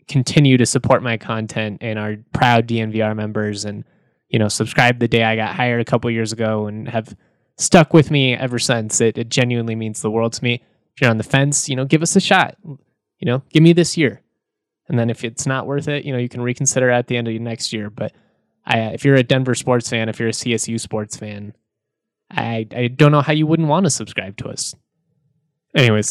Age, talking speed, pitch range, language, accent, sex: 20-39, 230 wpm, 115-140 Hz, English, American, male